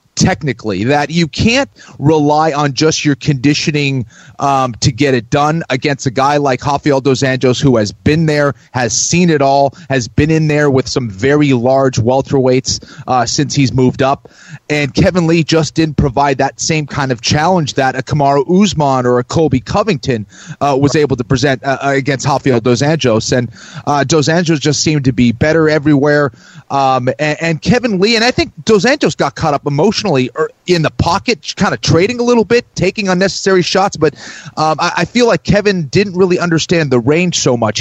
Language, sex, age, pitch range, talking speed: English, male, 30-49, 135-165 Hz, 195 wpm